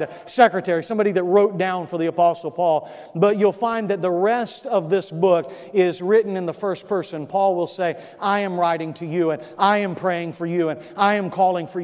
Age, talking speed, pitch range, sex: 40-59, 220 wpm, 175-215 Hz, male